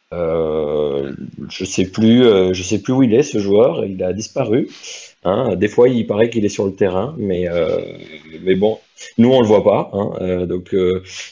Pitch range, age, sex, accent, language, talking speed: 90-110 Hz, 30-49, male, French, French, 205 wpm